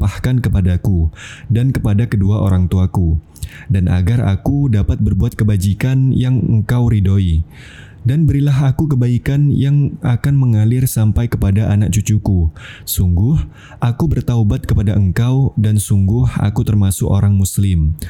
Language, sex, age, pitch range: Indonesian, male, 20-39, 100-130 Hz